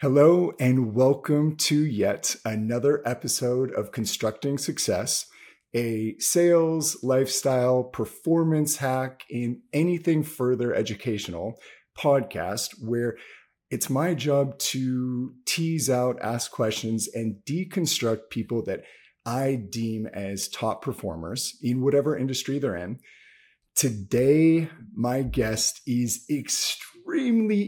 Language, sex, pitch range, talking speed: English, male, 115-150 Hz, 105 wpm